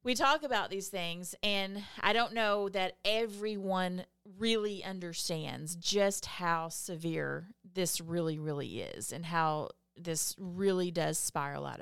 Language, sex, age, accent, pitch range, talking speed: English, female, 30-49, American, 155-190 Hz, 135 wpm